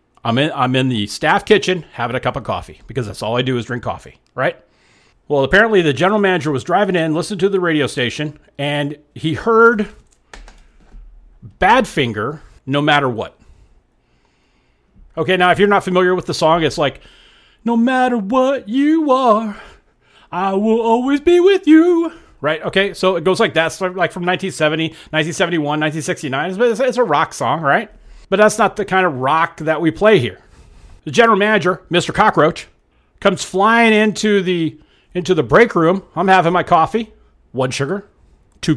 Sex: male